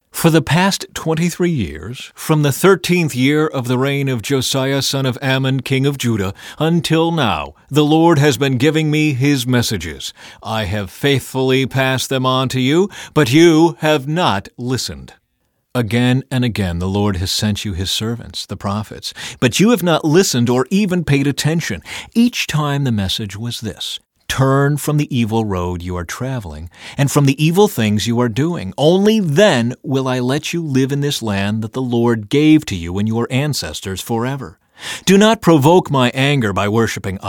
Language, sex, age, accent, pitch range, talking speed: English, male, 40-59, American, 115-155 Hz, 180 wpm